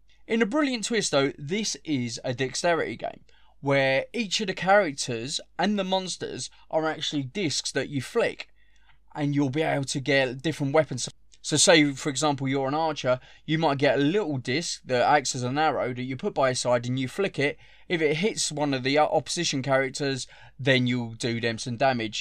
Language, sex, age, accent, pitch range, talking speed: English, male, 20-39, British, 130-165 Hz, 200 wpm